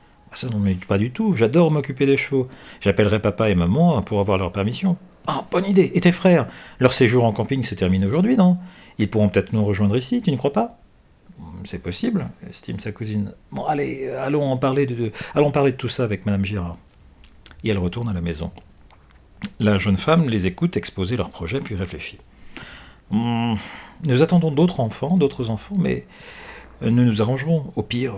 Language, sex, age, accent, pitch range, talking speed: French, male, 40-59, French, 100-135 Hz, 190 wpm